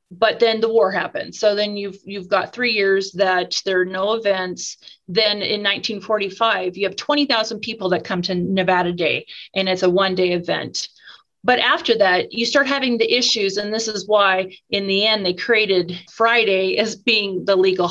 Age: 30-49